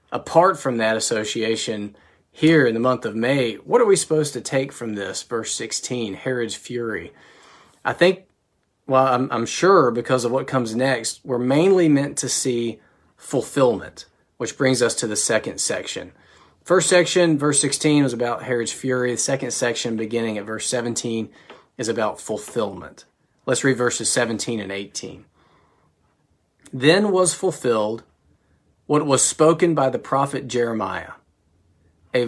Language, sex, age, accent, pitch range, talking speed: English, male, 40-59, American, 115-145 Hz, 150 wpm